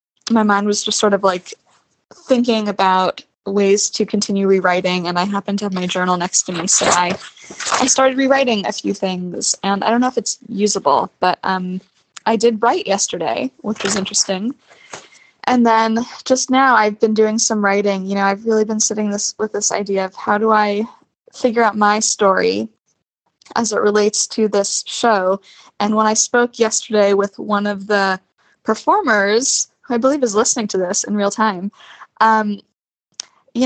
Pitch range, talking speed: 195-225 Hz, 180 wpm